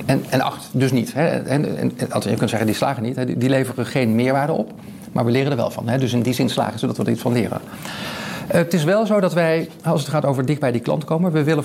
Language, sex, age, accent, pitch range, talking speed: Dutch, male, 50-69, Dutch, 130-170 Hz, 300 wpm